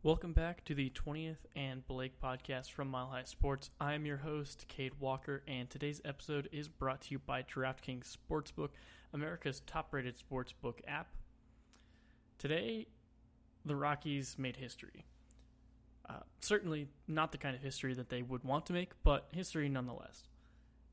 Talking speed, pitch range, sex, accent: 150 wpm, 125-145 Hz, male, American